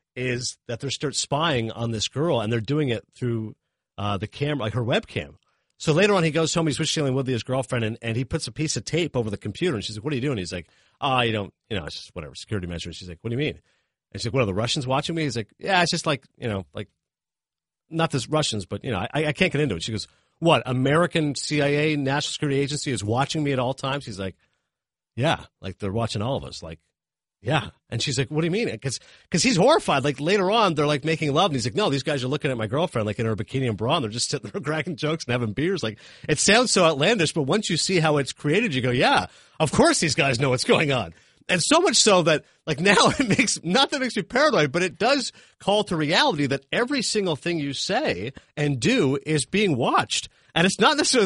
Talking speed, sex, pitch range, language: 265 wpm, male, 120-165 Hz, English